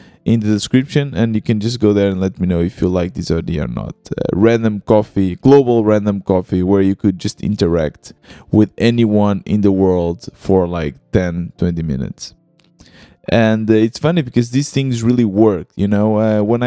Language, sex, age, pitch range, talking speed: English, male, 20-39, 100-125 Hz, 195 wpm